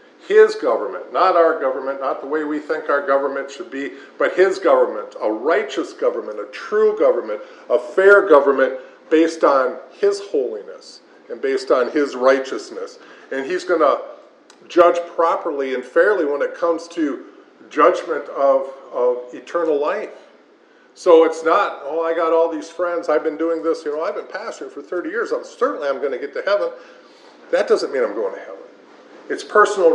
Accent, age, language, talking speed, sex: American, 50-69, English, 180 wpm, male